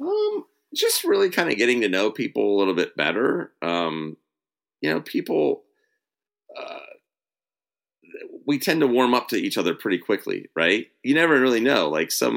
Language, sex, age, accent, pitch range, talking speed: English, male, 40-59, American, 95-140 Hz, 170 wpm